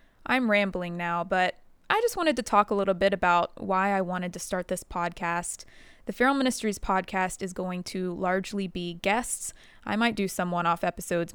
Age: 20-39